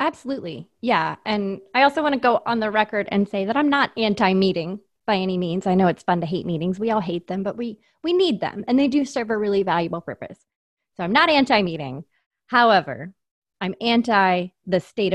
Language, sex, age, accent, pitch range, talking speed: English, female, 20-39, American, 180-235 Hz, 210 wpm